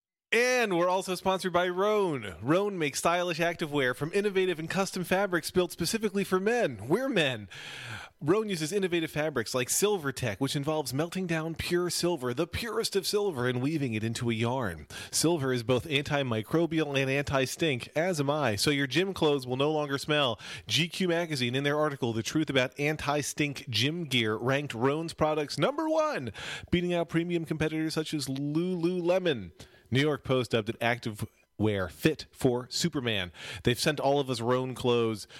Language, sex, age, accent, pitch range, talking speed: English, male, 30-49, American, 120-170 Hz, 170 wpm